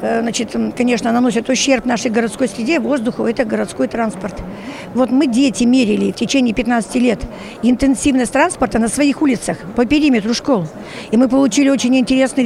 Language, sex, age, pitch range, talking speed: Russian, female, 60-79, 230-275 Hz, 155 wpm